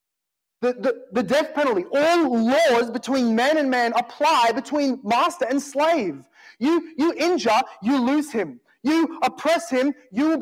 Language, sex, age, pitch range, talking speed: English, male, 30-49, 215-285 Hz, 155 wpm